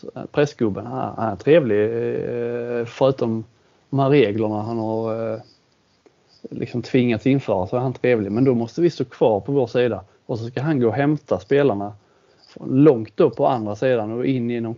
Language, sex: Swedish, male